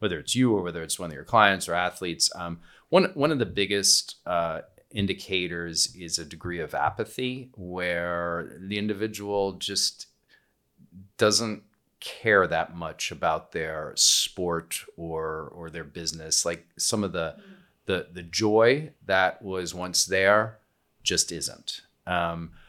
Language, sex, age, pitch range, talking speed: English, male, 40-59, 85-105 Hz, 145 wpm